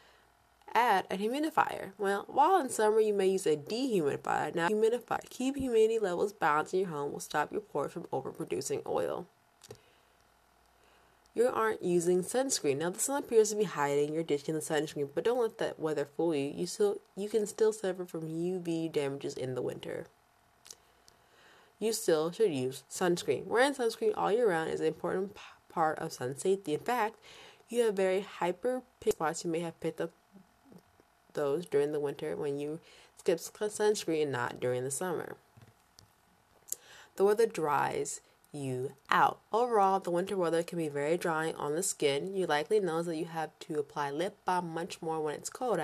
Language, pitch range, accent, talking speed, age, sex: English, 160-225 Hz, American, 180 wpm, 20-39, female